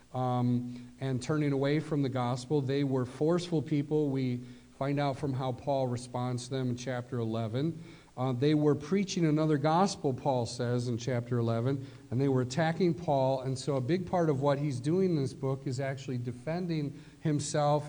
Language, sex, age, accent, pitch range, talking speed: English, male, 40-59, American, 125-150 Hz, 185 wpm